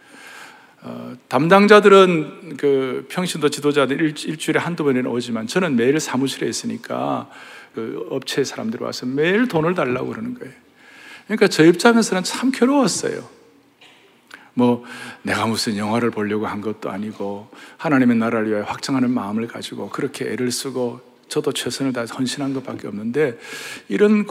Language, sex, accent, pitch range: Korean, male, native, 130-215 Hz